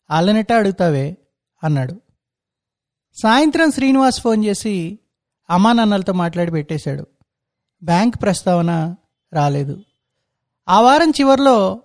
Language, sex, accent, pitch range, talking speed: Telugu, male, native, 165-225 Hz, 80 wpm